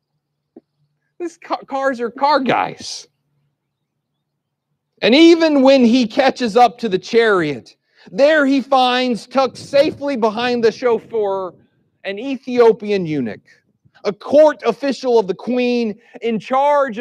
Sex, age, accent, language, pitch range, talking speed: male, 40-59, American, English, 170-245 Hz, 115 wpm